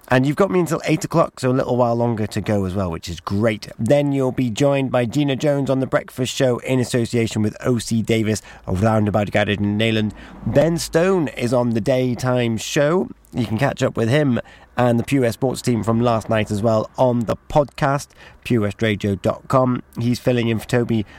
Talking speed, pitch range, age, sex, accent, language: 205 wpm, 110-135 Hz, 30-49, male, British, English